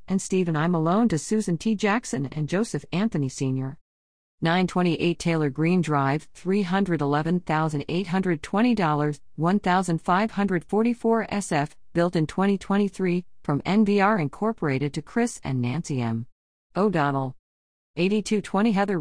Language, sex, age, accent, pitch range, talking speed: English, female, 50-69, American, 155-205 Hz, 105 wpm